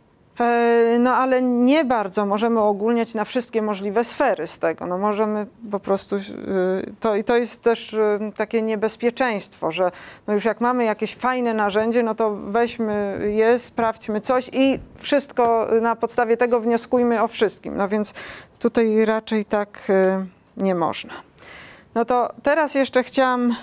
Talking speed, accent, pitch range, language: 145 wpm, native, 210-235 Hz, Polish